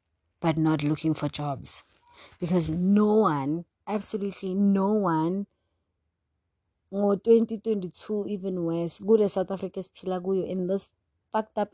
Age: 30-49